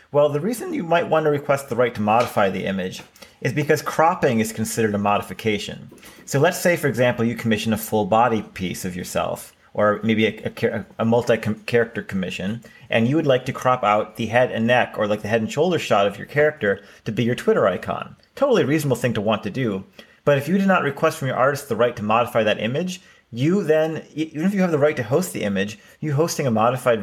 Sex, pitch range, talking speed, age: male, 110-145 Hz, 235 wpm, 30-49